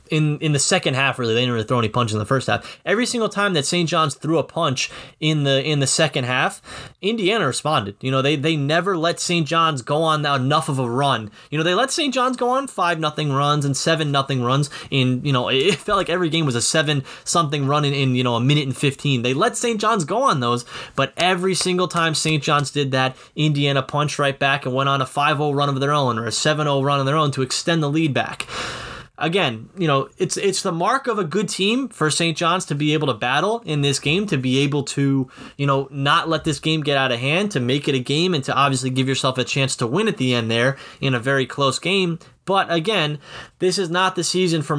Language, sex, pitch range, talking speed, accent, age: English, male, 135-170 Hz, 255 wpm, American, 20-39